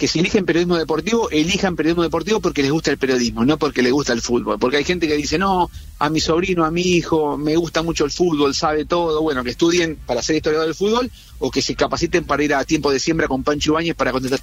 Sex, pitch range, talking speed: male, 140-175 Hz, 255 wpm